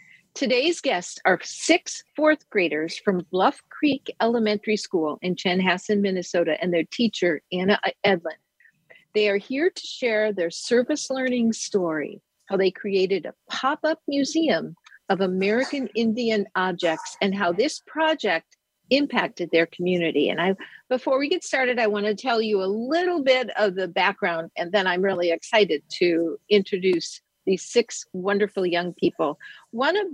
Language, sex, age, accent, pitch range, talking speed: English, female, 50-69, American, 180-235 Hz, 150 wpm